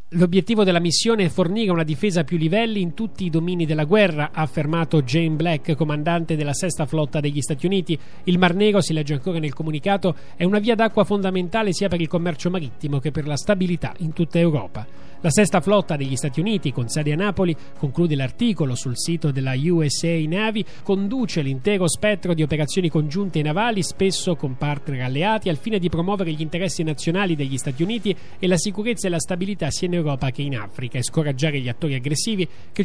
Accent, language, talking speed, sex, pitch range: native, Italian, 200 wpm, male, 150-195 Hz